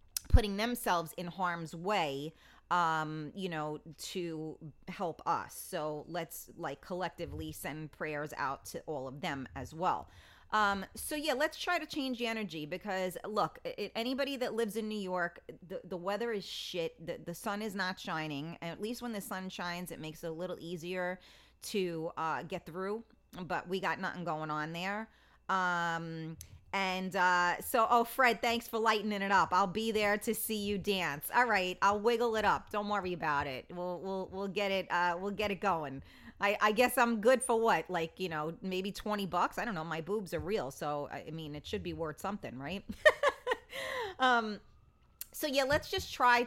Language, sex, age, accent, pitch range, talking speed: English, female, 30-49, American, 170-220 Hz, 190 wpm